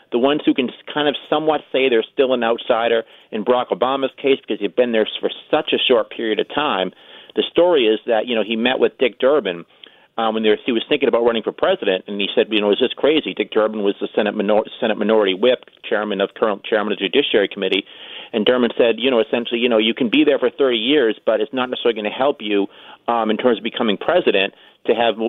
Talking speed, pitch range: 245 wpm, 110-130 Hz